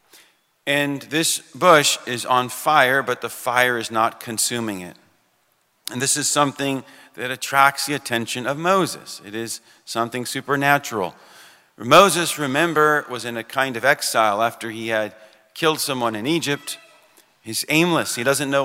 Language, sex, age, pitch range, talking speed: English, male, 50-69, 115-145 Hz, 150 wpm